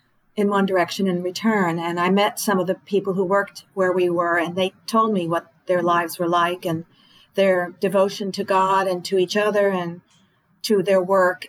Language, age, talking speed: English, 50-69, 205 wpm